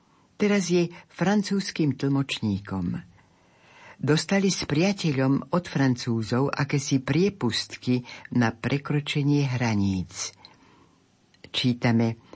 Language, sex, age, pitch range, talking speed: Slovak, female, 60-79, 110-150 Hz, 75 wpm